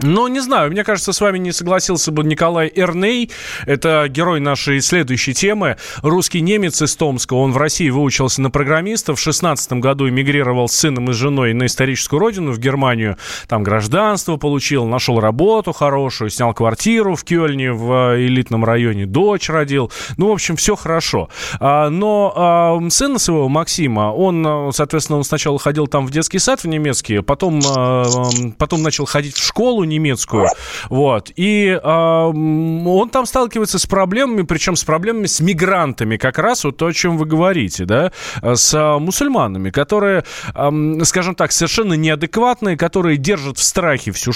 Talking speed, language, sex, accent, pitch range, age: 160 wpm, Russian, male, native, 130-180 Hz, 20-39